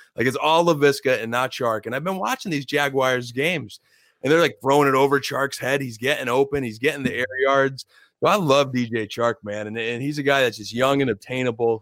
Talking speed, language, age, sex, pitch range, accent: 235 wpm, English, 30-49, male, 115-145 Hz, American